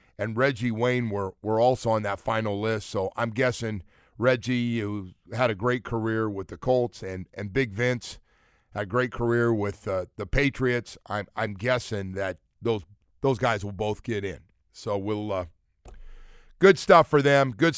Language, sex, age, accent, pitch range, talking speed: English, male, 50-69, American, 105-155 Hz, 180 wpm